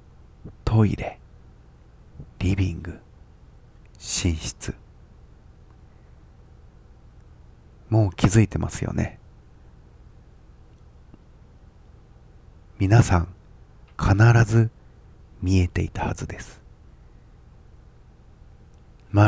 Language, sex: Japanese, male